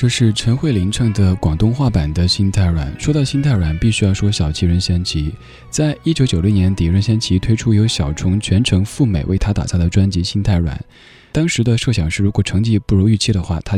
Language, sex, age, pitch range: Chinese, male, 20-39, 85-115 Hz